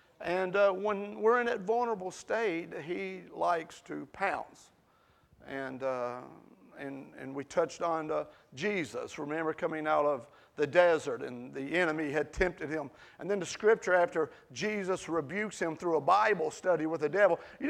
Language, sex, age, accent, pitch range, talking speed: English, male, 40-59, American, 170-230 Hz, 165 wpm